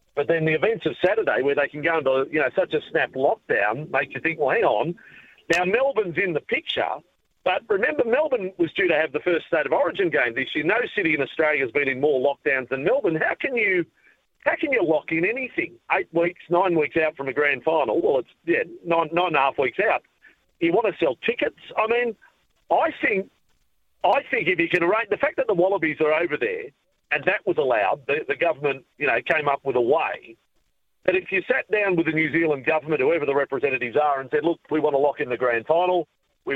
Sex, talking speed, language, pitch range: male, 235 wpm, English, 145-225 Hz